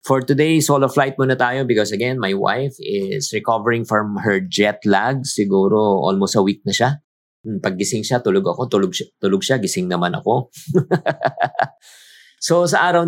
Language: Filipino